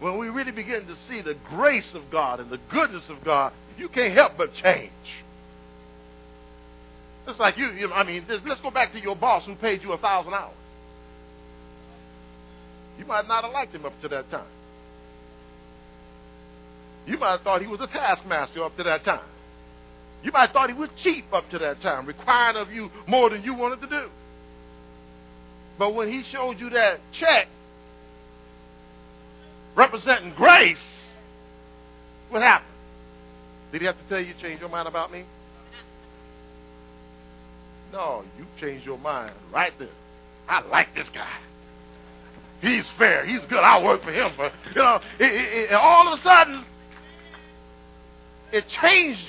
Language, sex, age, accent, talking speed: English, male, 50-69, American, 165 wpm